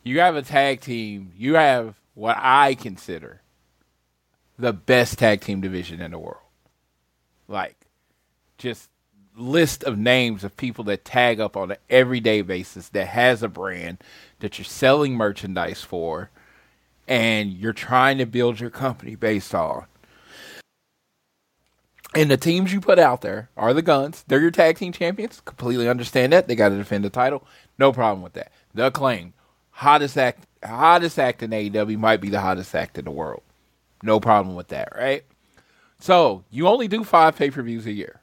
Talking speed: 165 wpm